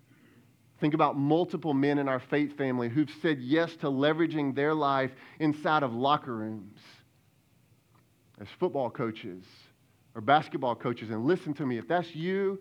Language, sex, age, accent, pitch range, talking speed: English, male, 40-59, American, 110-135 Hz, 150 wpm